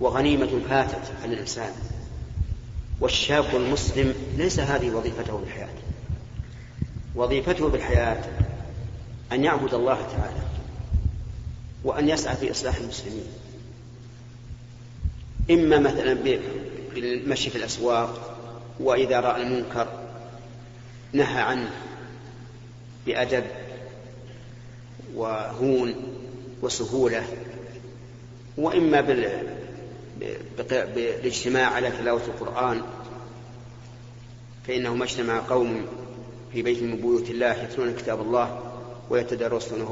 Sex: male